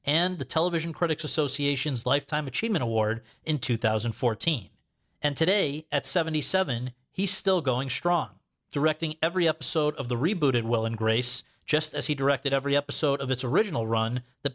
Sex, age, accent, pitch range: male, 40-59, American, 120-160 Hz